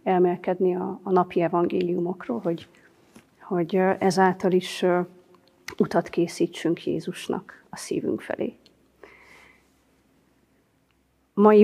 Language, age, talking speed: Hungarian, 30-49, 80 wpm